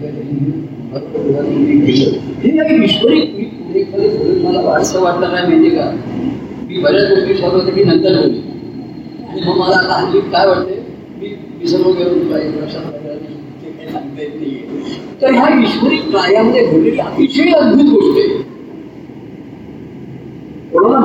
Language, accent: Marathi, native